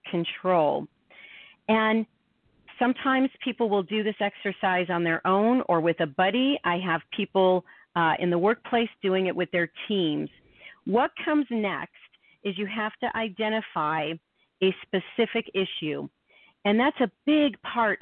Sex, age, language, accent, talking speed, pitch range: female, 40-59, English, American, 145 wpm, 180-225 Hz